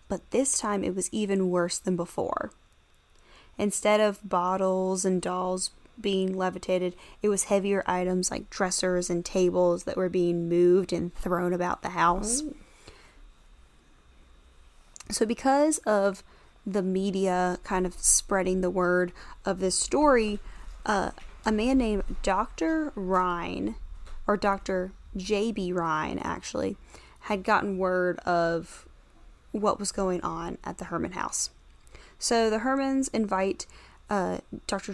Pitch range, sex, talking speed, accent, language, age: 180-215 Hz, female, 130 wpm, American, English, 10-29